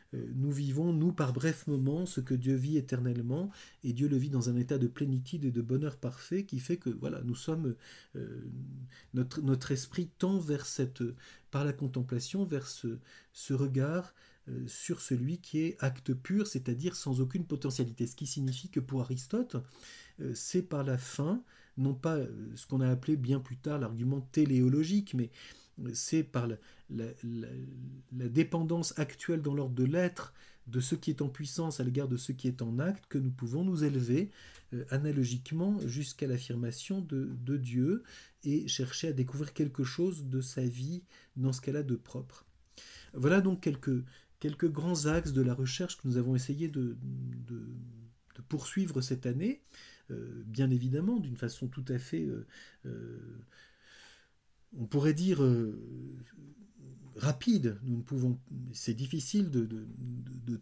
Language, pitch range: French, 125-155 Hz